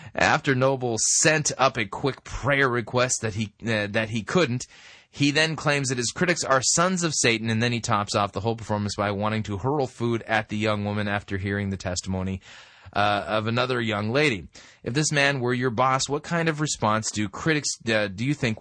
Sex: male